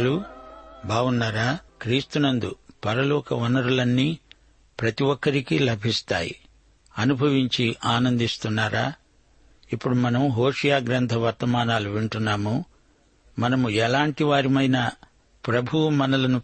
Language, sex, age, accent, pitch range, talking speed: Telugu, male, 60-79, native, 115-140 Hz, 70 wpm